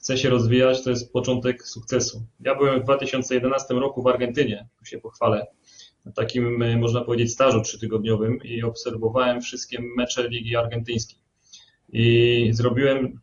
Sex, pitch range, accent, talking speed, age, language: male, 120-135 Hz, native, 140 wpm, 30-49, Polish